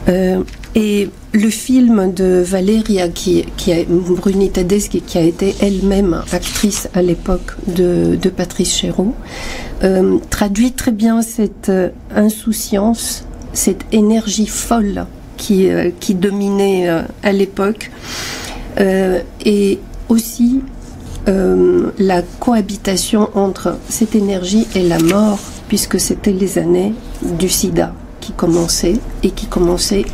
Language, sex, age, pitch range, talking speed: Bulgarian, female, 50-69, 180-210 Hz, 115 wpm